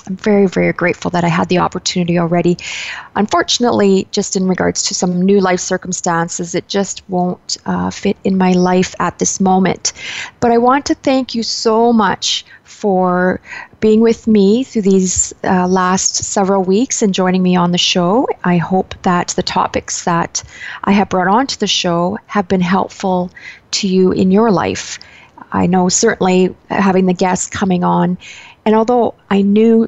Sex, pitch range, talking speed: female, 175-205 Hz, 175 wpm